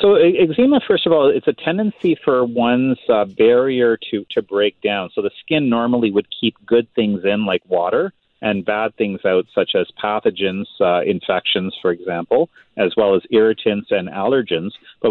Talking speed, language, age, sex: 180 wpm, English, 40-59, male